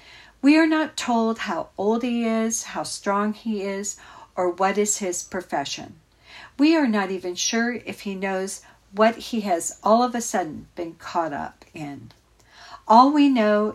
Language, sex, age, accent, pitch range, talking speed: English, female, 50-69, American, 185-245 Hz, 170 wpm